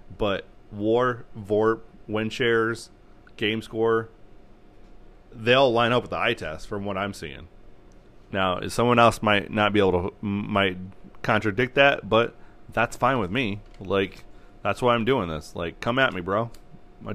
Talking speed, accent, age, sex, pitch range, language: 165 wpm, American, 30-49, male, 100-120 Hz, English